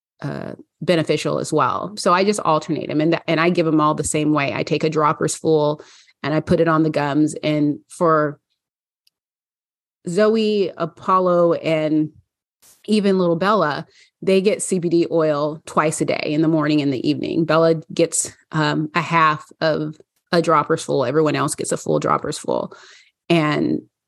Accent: American